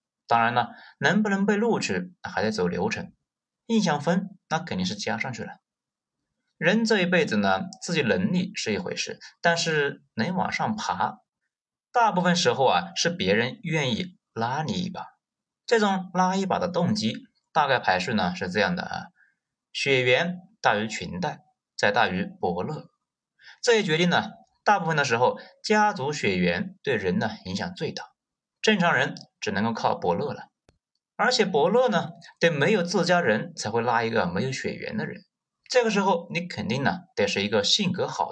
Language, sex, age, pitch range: Chinese, male, 30-49, 160-210 Hz